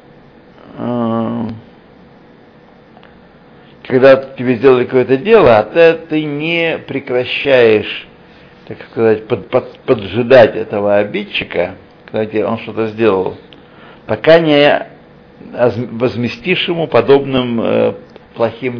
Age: 60-79